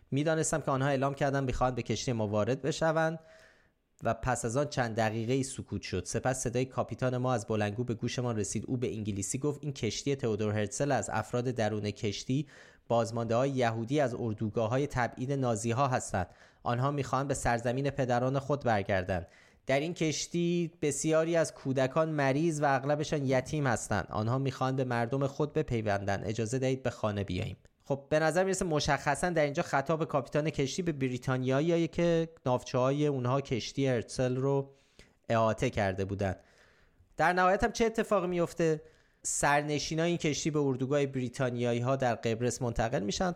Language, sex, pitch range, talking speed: Persian, male, 120-150 Hz, 160 wpm